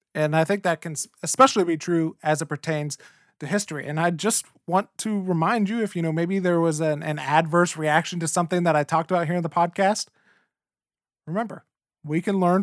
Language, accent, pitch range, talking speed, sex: English, American, 145-175 Hz, 210 wpm, male